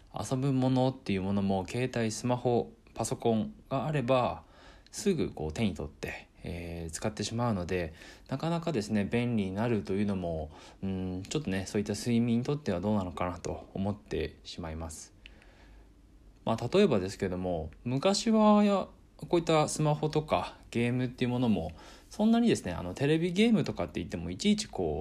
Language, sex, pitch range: Japanese, male, 90-130 Hz